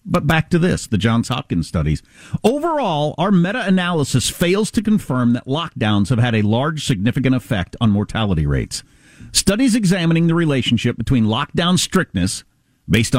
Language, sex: English, male